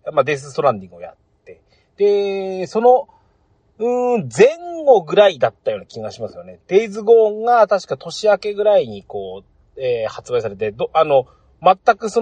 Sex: male